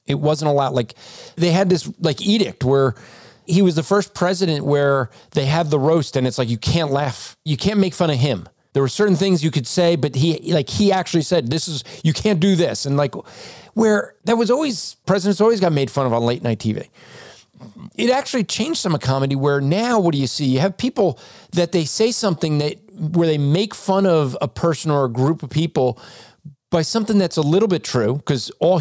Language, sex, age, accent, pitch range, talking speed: English, male, 40-59, American, 135-185 Hz, 225 wpm